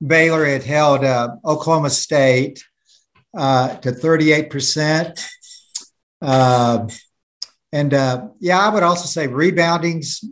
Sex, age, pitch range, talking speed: male, 60-79, 125-160 Hz, 105 wpm